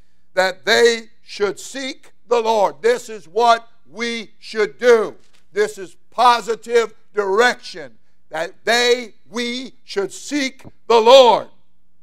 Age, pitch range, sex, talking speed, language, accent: 60-79, 130-210 Hz, male, 115 wpm, English, American